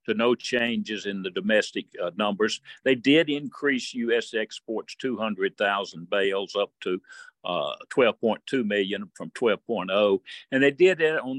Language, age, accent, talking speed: English, 60-79, American, 140 wpm